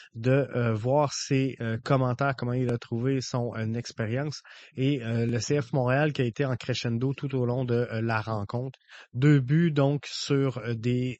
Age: 30-49